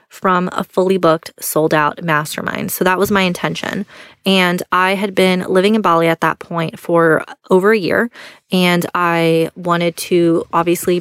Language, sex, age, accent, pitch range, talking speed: English, female, 20-39, American, 170-195 Hz, 170 wpm